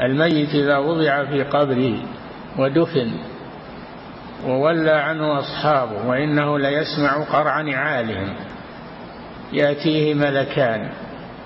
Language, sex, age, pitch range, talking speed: Arabic, male, 50-69, 140-190 Hz, 80 wpm